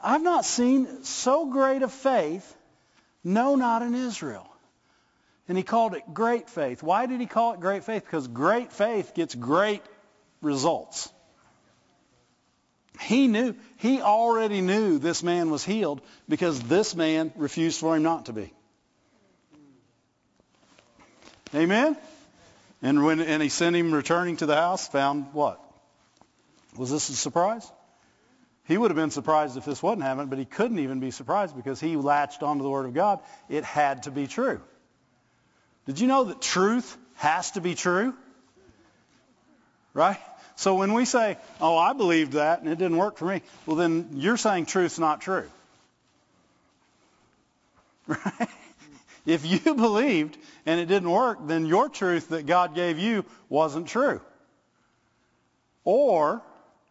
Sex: male